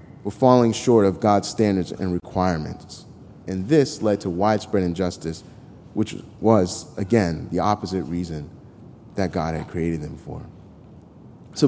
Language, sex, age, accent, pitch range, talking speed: English, male, 30-49, American, 95-125 Hz, 140 wpm